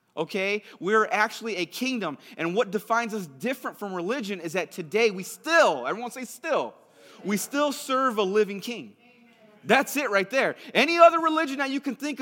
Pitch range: 215-265 Hz